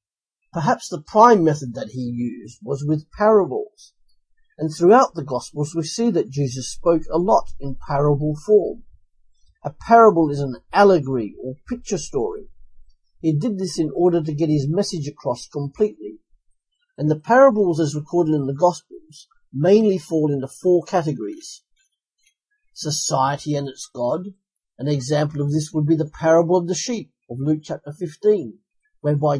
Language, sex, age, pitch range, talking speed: English, male, 50-69, 145-190 Hz, 155 wpm